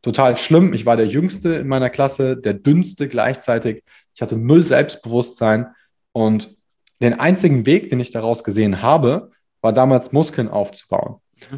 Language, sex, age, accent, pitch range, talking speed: German, male, 20-39, German, 120-155 Hz, 150 wpm